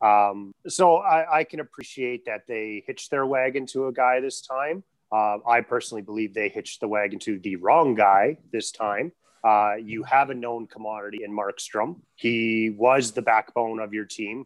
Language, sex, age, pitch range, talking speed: English, male, 30-49, 110-135 Hz, 185 wpm